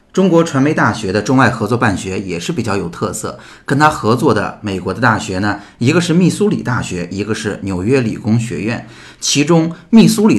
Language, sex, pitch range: Chinese, male, 105-135 Hz